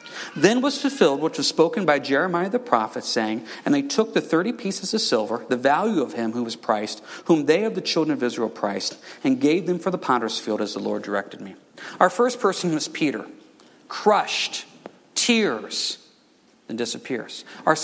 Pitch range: 155-240 Hz